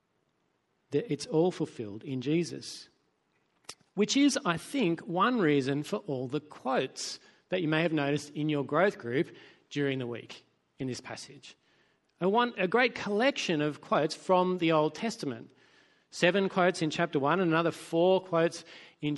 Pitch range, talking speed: 145-190 Hz, 165 wpm